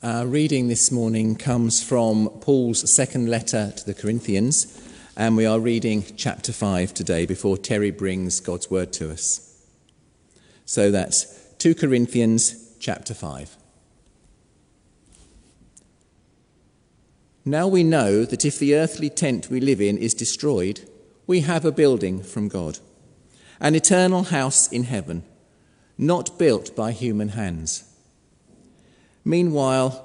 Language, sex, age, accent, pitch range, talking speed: English, male, 40-59, British, 105-145 Hz, 125 wpm